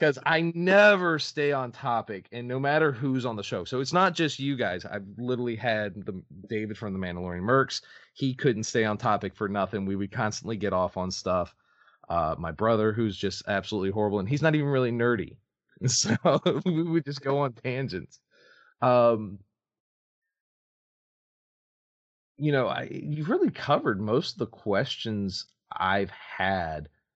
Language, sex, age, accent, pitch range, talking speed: English, male, 30-49, American, 105-140 Hz, 165 wpm